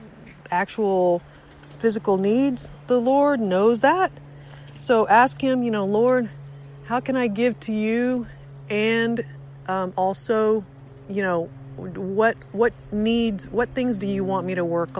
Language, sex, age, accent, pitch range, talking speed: English, female, 50-69, American, 165-225 Hz, 140 wpm